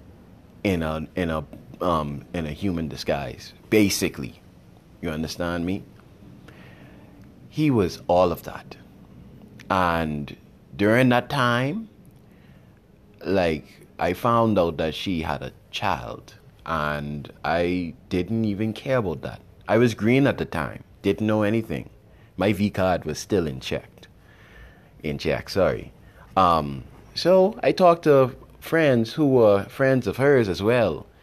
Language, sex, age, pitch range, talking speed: English, male, 30-49, 80-125 Hz, 135 wpm